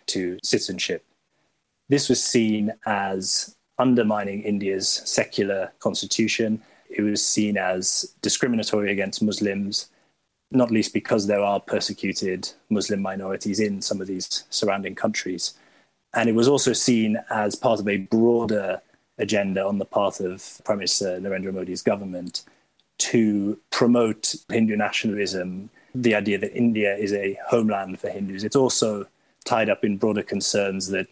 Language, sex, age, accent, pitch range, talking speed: English, male, 20-39, British, 95-110 Hz, 140 wpm